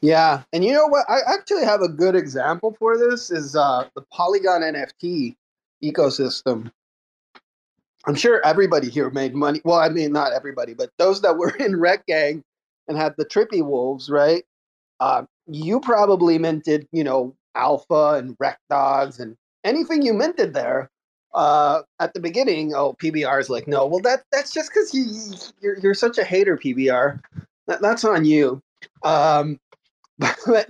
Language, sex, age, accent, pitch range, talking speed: English, male, 30-49, American, 145-215 Hz, 165 wpm